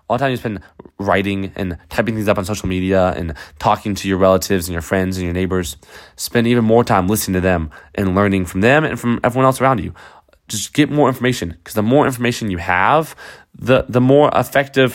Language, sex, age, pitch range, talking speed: English, male, 20-39, 95-130 Hz, 220 wpm